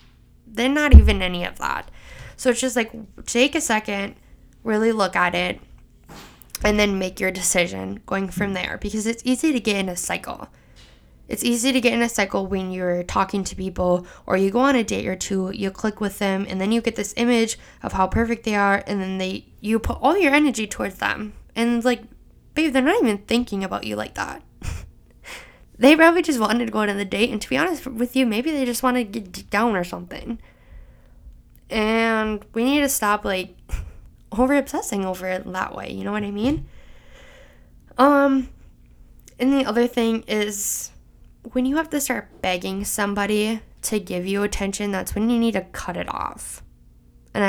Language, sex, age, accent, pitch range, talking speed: English, female, 10-29, American, 190-240 Hz, 195 wpm